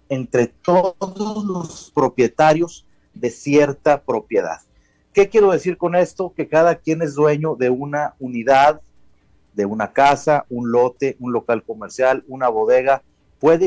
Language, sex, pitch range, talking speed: Spanish, male, 125-175 Hz, 135 wpm